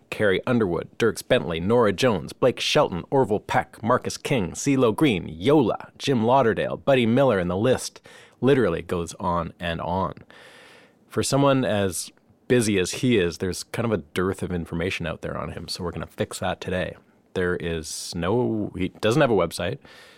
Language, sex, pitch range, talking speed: English, male, 90-110 Hz, 180 wpm